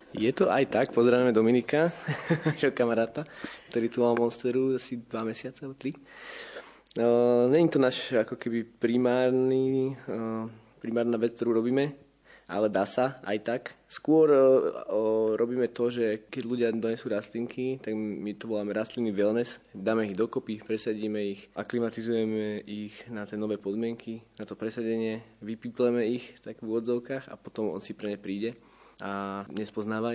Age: 20-39